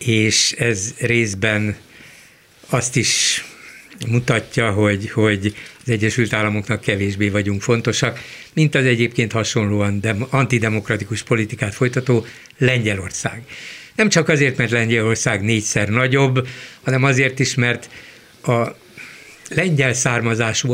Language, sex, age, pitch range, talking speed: Hungarian, male, 60-79, 110-135 Hz, 105 wpm